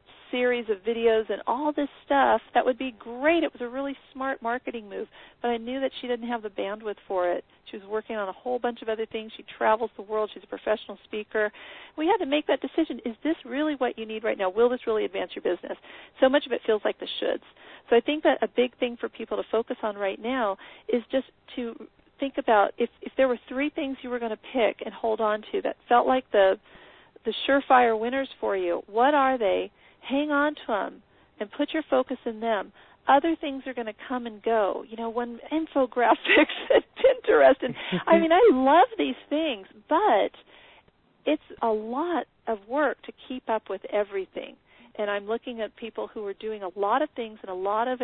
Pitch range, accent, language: 220-275 Hz, American, English